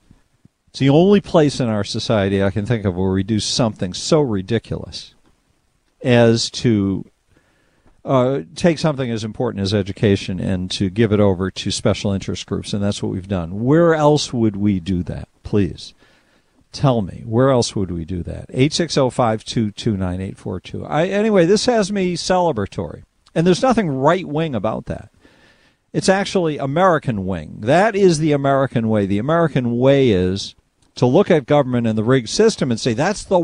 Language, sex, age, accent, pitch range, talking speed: English, male, 50-69, American, 105-175 Hz, 180 wpm